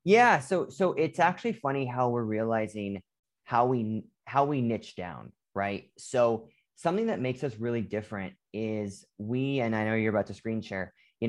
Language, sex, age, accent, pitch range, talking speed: English, male, 30-49, American, 105-135 Hz, 180 wpm